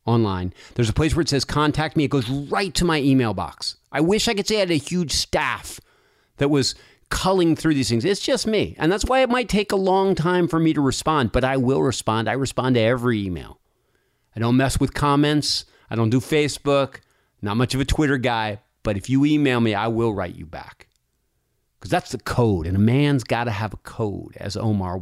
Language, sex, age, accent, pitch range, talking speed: English, male, 40-59, American, 115-155 Hz, 230 wpm